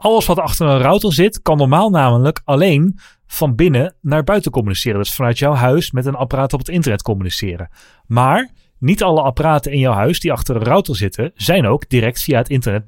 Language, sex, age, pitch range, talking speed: Dutch, male, 30-49, 120-160 Hz, 210 wpm